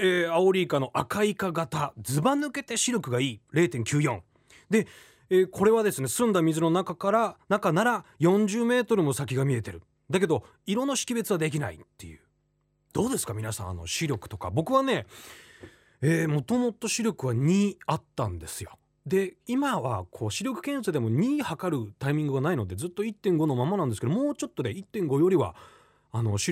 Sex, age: male, 30-49